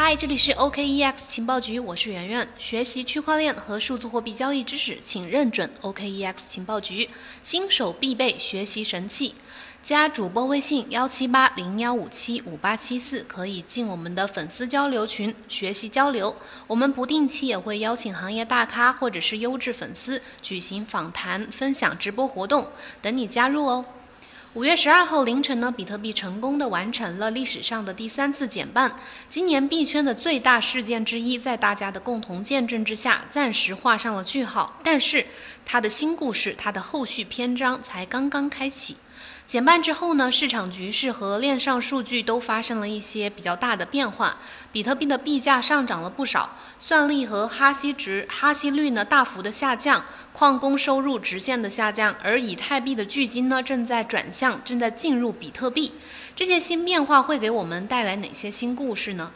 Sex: female